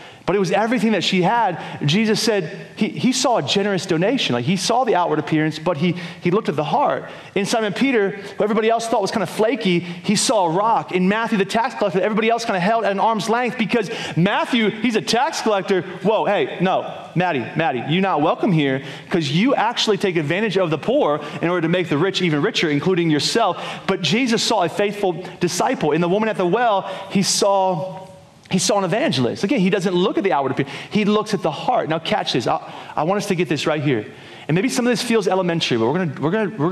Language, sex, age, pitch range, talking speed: English, male, 30-49, 155-210 Hz, 230 wpm